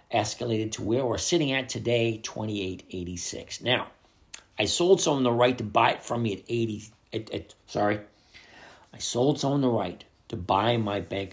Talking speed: 190 wpm